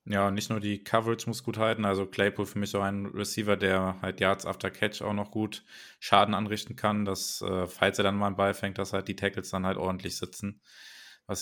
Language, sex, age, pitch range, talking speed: German, male, 20-39, 95-105 Hz, 225 wpm